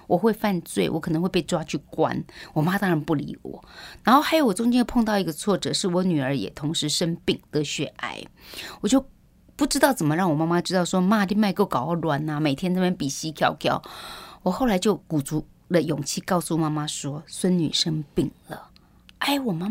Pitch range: 160-215 Hz